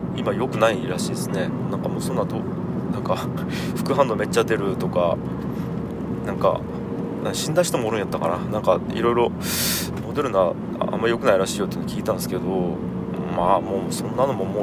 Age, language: 20-39, Japanese